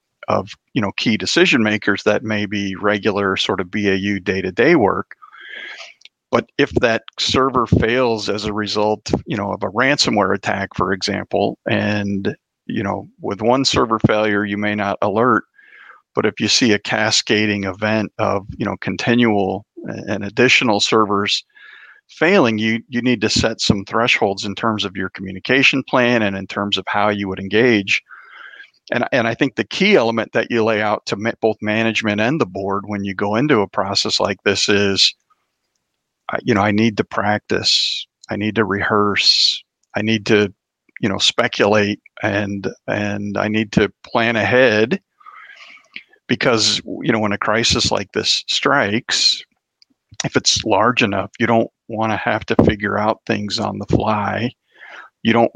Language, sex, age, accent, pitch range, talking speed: English, male, 50-69, American, 100-115 Hz, 165 wpm